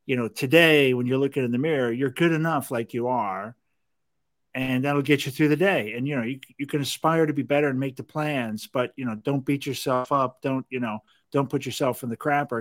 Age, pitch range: 50-69, 120-145 Hz